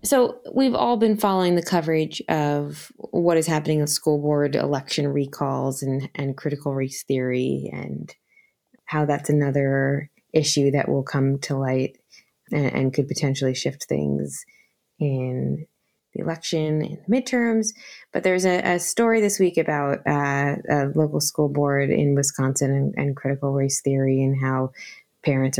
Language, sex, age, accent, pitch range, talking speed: English, female, 20-39, American, 135-155 Hz, 155 wpm